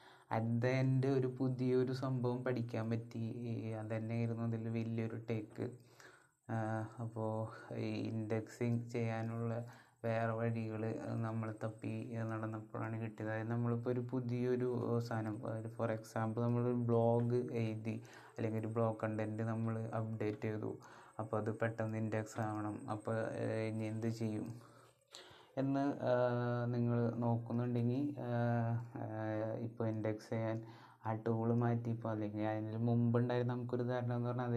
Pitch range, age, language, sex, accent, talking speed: 110-125 Hz, 20-39, Malayalam, male, native, 100 wpm